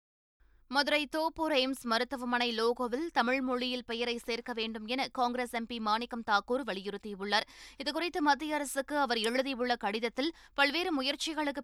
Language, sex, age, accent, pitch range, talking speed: Tamil, female, 20-39, native, 235-275 Hz, 125 wpm